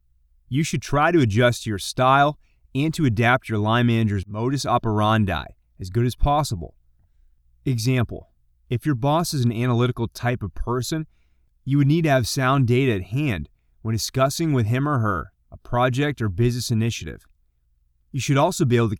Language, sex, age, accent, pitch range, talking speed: English, male, 30-49, American, 100-140 Hz, 175 wpm